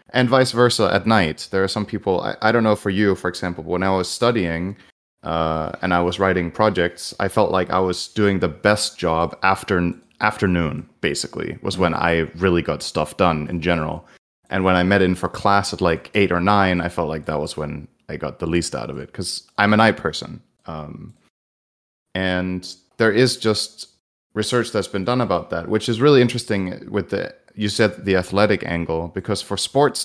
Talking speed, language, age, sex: 205 wpm, English, 30-49, male